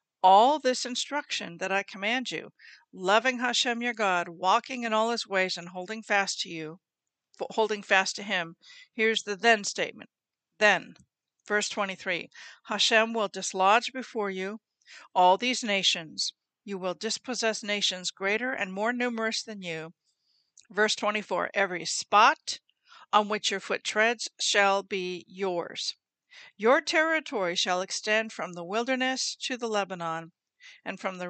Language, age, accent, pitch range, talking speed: English, 50-69, American, 190-245 Hz, 145 wpm